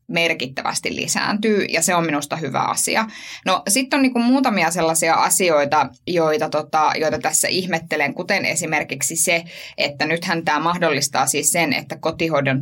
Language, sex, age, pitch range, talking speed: Finnish, female, 20-39, 150-205 Hz, 145 wpm